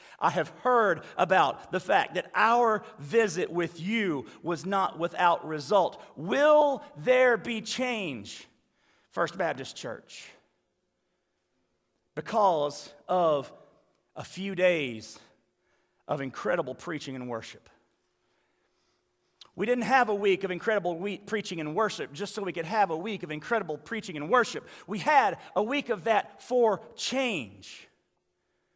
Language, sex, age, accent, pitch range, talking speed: English, male, 40-59, American, 175-235 Hz, 130 wpm